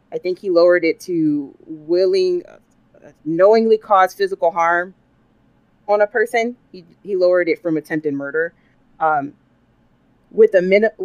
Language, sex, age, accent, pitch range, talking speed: English, female, 30-49, American, 165-225 Hz, 140 wpm